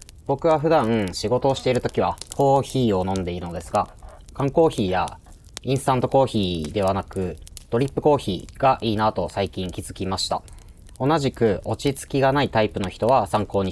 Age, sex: 30-49, male